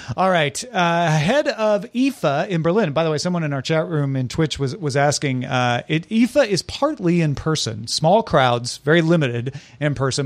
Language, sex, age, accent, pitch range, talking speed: English, male, 40-59, American, 140-190 Hz, 200 wpm